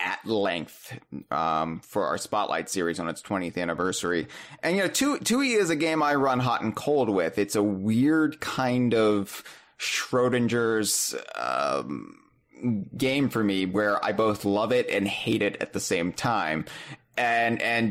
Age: 30-49